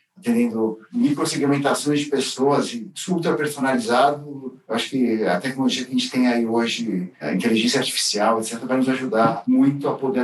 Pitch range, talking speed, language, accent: 120-190 Hz, 160 wpm, Portuguese, Brazilian